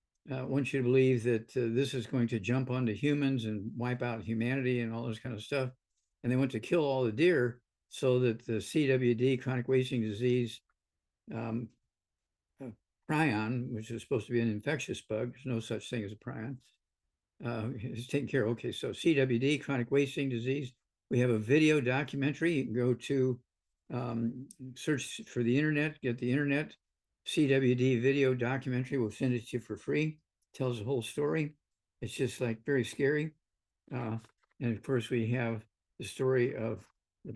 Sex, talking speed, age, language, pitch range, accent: male, 185 wpm, 60-79, English, 115-140 Hz, American